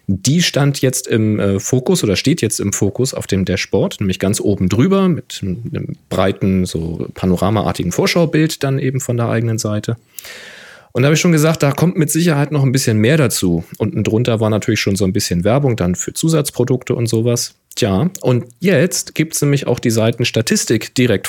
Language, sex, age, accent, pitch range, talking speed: German, male, 40-59, German, 100-130 Hz, 190 wpm